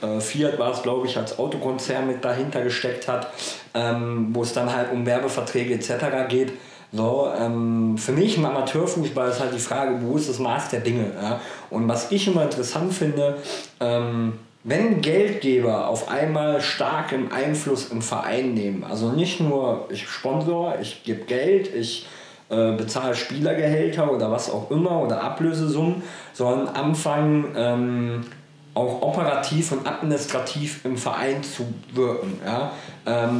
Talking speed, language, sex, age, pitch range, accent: 150 wpm, German, male, 40-59, 120-150 Hz, German